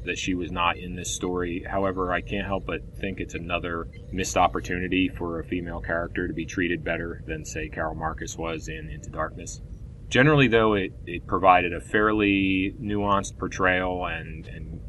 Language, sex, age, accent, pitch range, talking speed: English, male, 30-49, American, 85-105 Hz, 175 wpm